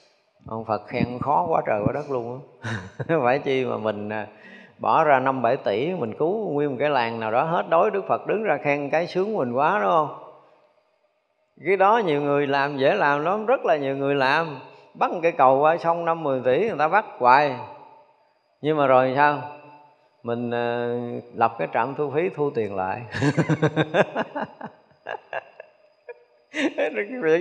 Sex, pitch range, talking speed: male, 130-180 Hz, 170 wpm